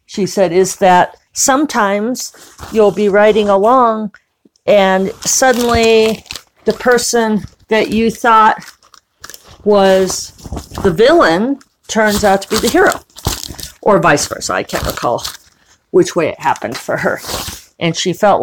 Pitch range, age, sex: 180-235 Hz, 50-69, female